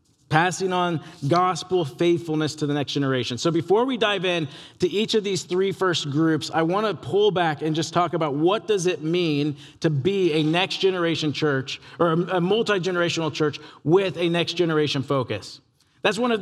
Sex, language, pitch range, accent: male, English, 155-205 Hz, American